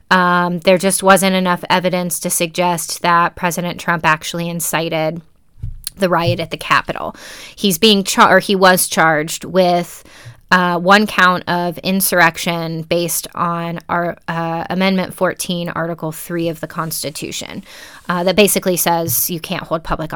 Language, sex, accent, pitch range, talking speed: English, female, American, 170-195 Hz, 150 wpm